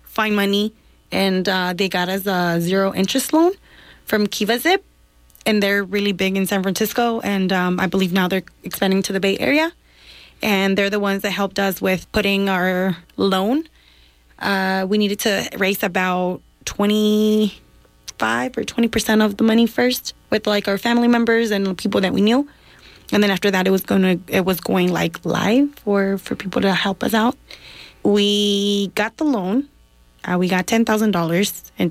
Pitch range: 185-215 Hz